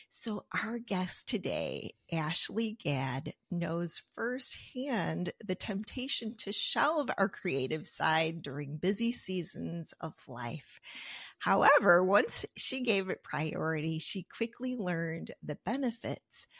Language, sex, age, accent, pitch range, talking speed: English, female, 30-49, American, 165-230 Hz, 110 wpm